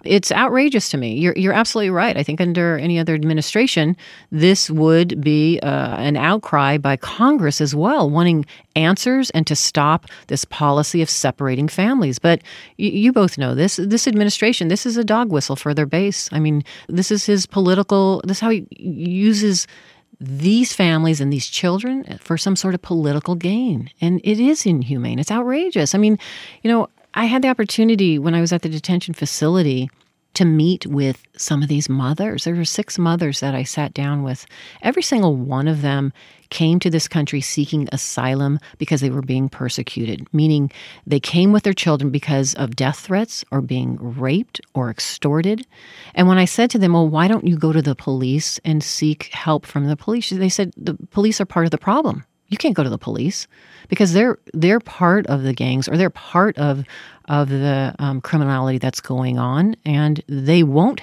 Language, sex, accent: English, female, American